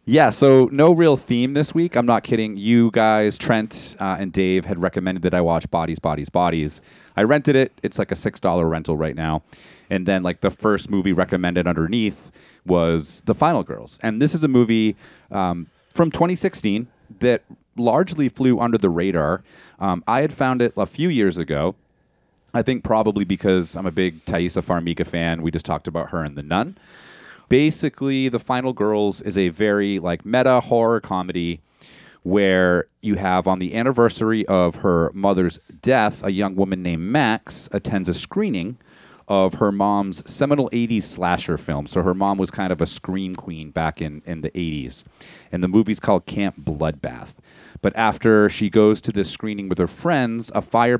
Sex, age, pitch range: male, 30-49, 85-115 Hz